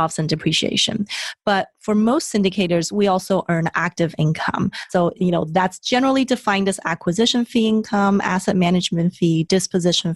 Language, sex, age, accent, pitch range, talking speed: English, female, 30-49, American, 165-210 Hz, 150 wpm